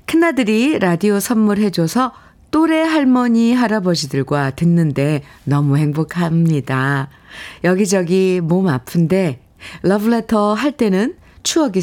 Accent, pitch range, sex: native, 140-200 Hz, female